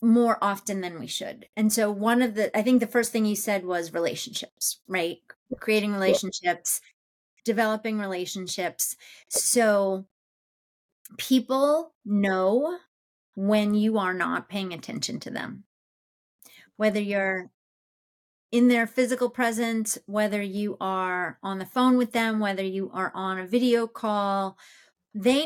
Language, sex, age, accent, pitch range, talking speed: English, female, 30-49, American, 195-245 Hz, 135 wpm